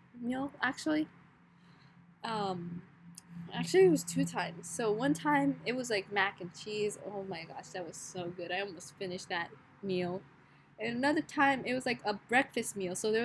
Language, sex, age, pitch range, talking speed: English, female, 10-29, 180-225 Hz, 180 wpm